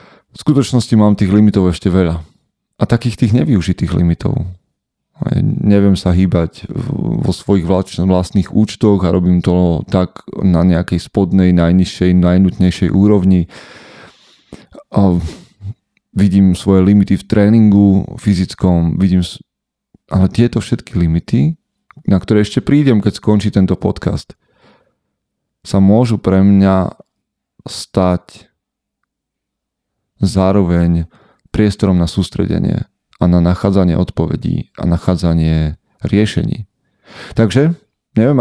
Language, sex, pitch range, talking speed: Slovak, male, 90-105 Hz, 105 wpm